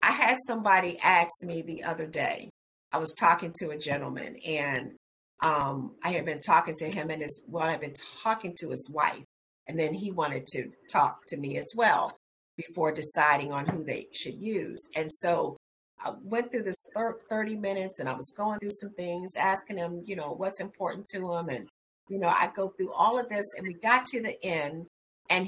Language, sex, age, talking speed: English, female, 50-69, 205 wpm